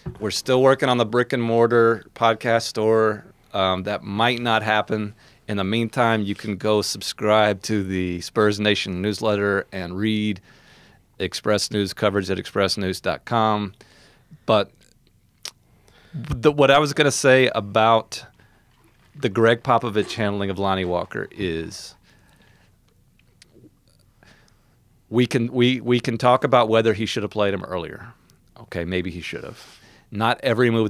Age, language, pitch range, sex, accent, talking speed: 40-59, English, 95-115 Hz, male, American, 140 wpm